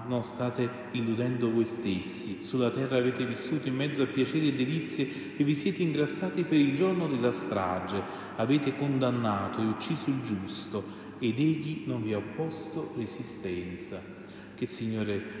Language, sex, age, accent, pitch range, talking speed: Italian, male, 40-59, native, 105-120 Hz, 155 wpm